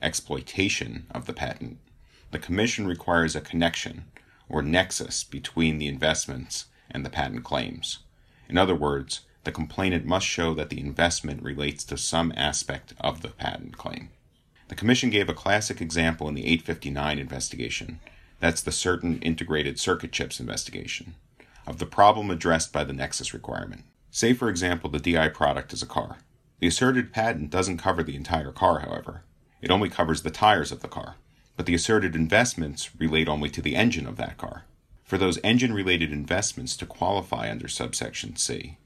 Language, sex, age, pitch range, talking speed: English, male, 40-59, 80-95 Hz, 165 wpm